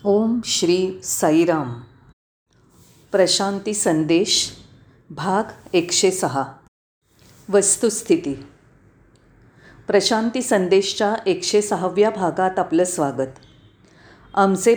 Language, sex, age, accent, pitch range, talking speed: Marathi, female, 40-59, native, 145-225 Hz, 70 wpm